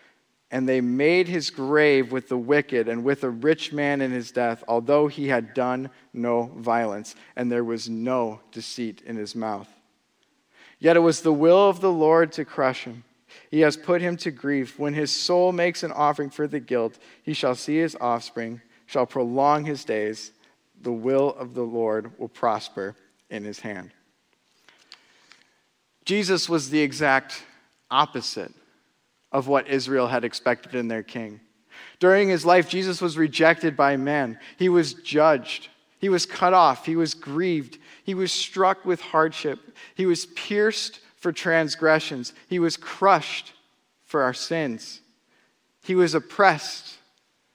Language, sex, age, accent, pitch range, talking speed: English, male, 40-59, American, 120-165 Hz, 160 wpm